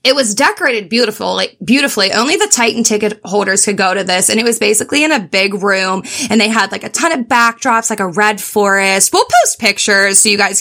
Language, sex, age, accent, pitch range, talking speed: English, female, 20-39, American, 195-250 Hz, 230 wpm